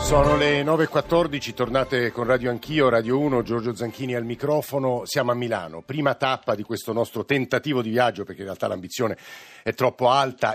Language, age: Italian, 50-69